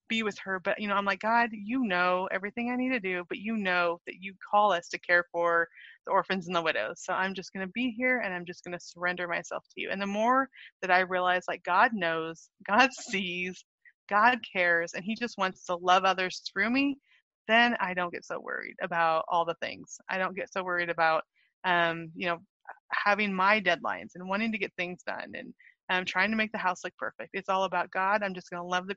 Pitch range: 180-220 Hz